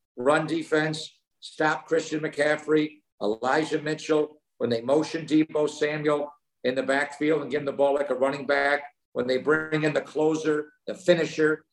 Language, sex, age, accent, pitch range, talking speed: English, male, 50-69, American, 130-155 Hz, 165 wpm